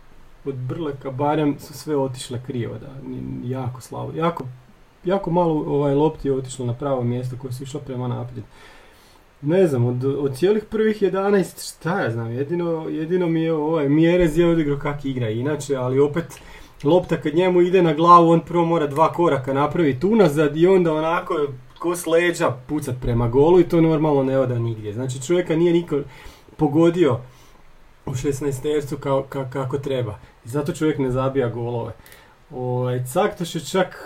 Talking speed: 170 wpm